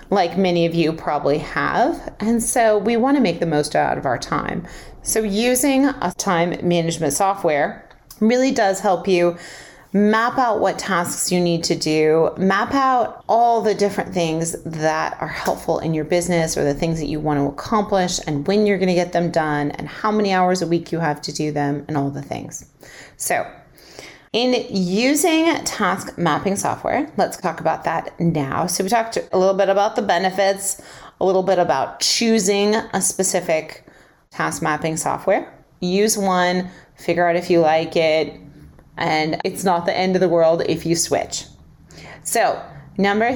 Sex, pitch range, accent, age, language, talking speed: female, 160-205 Hz, American, 30-49, English, 180 wpm